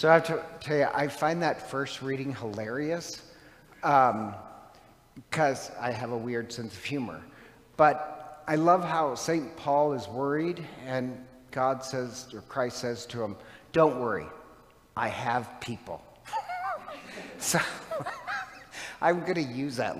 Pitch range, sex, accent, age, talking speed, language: 120-155 Hz, male, American, 50-69, 145 wpm, English